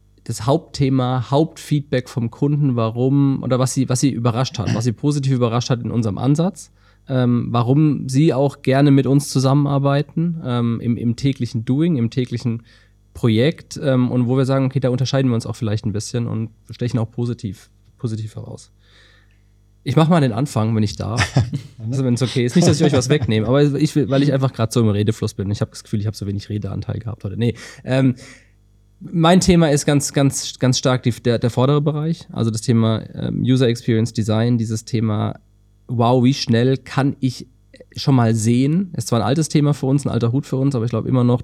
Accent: German